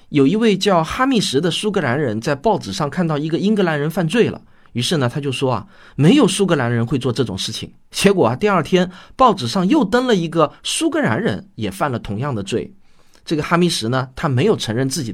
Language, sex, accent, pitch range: Chinese, male, native, 120-195 Hz